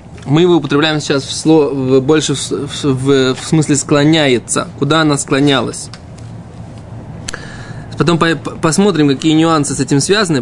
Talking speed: 130 wpm